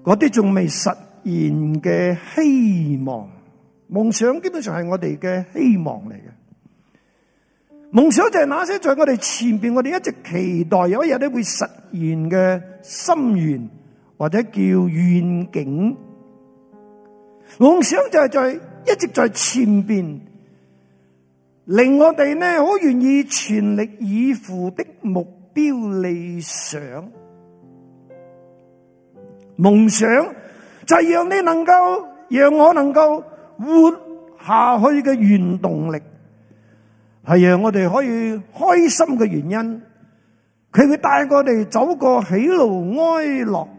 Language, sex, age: Chinese, male, 50-69